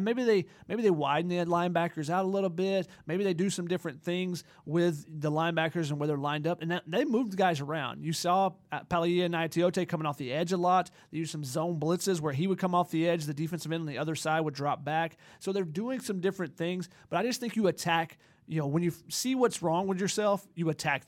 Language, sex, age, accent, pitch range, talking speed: English, male, 30-49, American, 160-190 Hz, 250 wpm